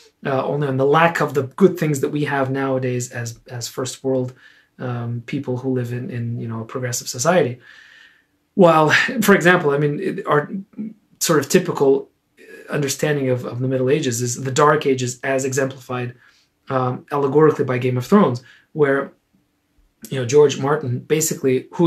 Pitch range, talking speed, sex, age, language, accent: 130-175 Hz, 175 wpm, male, 30-49, English, Canadian